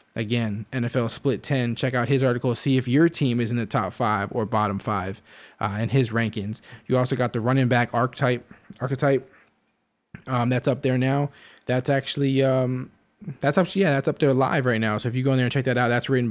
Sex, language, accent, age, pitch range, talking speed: male, English, American, 20-39, 120-140 Hz, 230 wpm